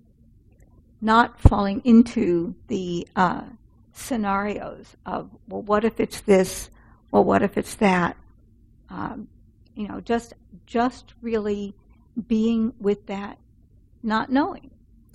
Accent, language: American, English